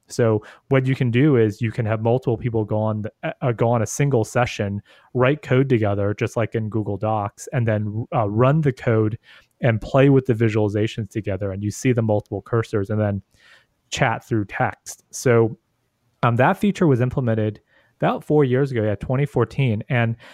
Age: 30-49